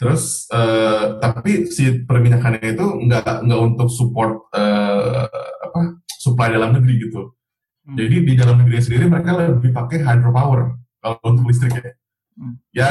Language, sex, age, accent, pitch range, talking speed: Indonesian, male, 20-39, native, 120-140 Hz, 135 wpm